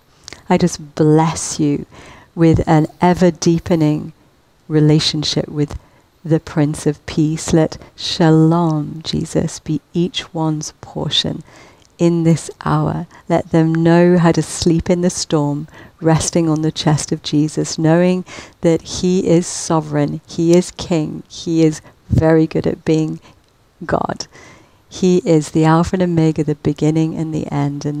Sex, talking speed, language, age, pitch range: female, 140 wpm, English, 50-69, 150-165 Hz